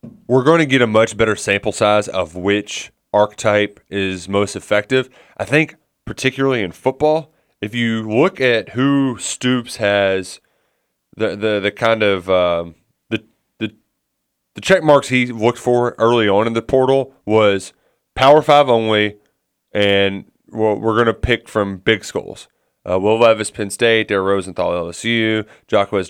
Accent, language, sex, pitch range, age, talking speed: American, English, male, 100-130 Hz, 30-49, 155 wpm